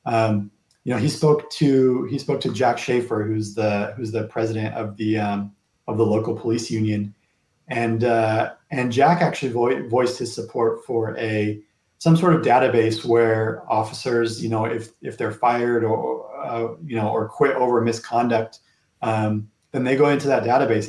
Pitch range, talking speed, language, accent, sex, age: 110-120 Hz, 180 wpm, English, American, male, 30-49